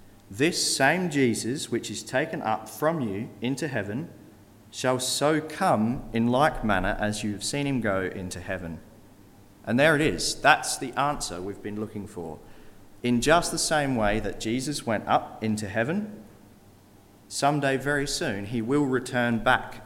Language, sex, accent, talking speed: English, male, Australian, 165 wpm